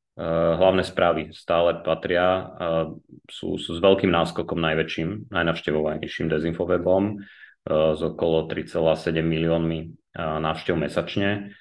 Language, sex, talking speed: Slovak, male, 110 wpm